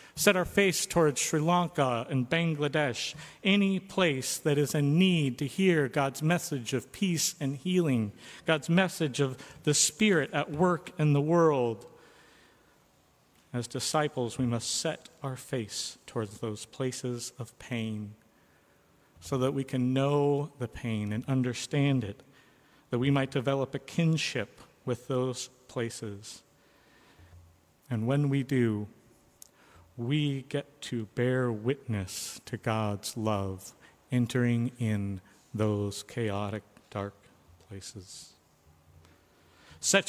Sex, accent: male, American